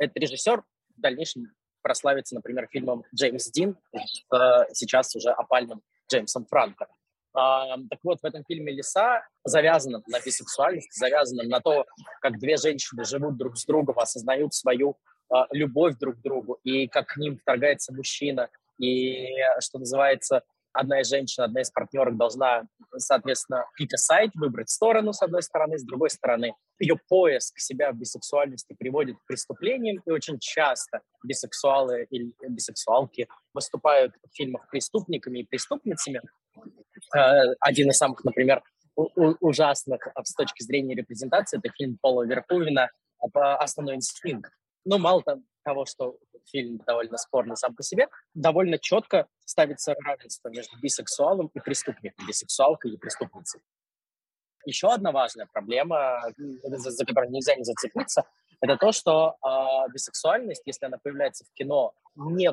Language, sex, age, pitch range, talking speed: Russian, male, 20-39, 130-160 Hz, 135 wpm